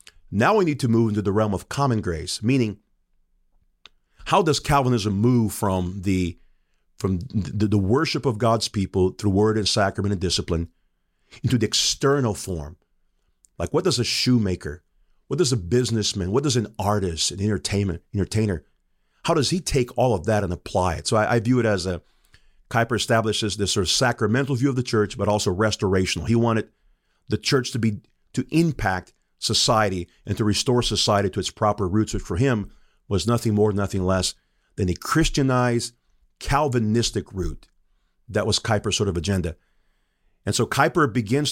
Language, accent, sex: English, American, male